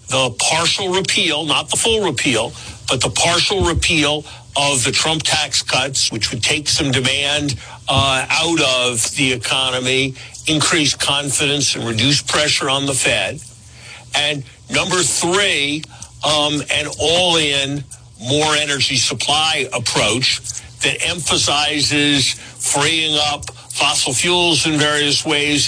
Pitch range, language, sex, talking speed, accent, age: 125-150 Hz, English, male, 125 wpm, American, 50-69